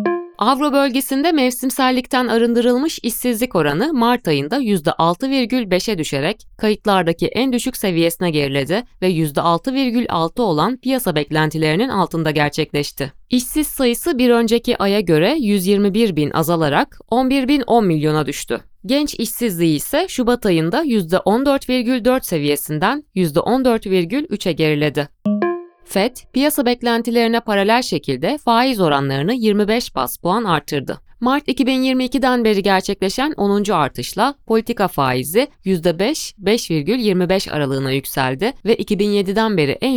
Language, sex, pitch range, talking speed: Turkish, female, 165-255 Hz, 105 wpm